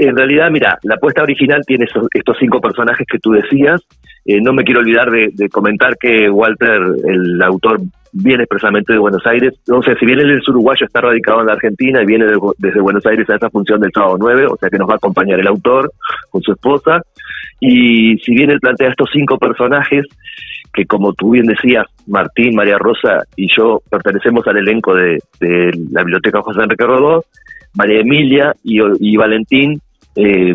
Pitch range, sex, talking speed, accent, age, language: 100-135 Hz, male, 195 wpm, Argentinian, 40-59, Spanish